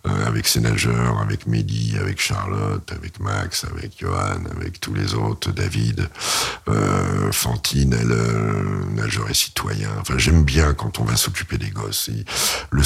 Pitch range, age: 65-100 Hz, 60-79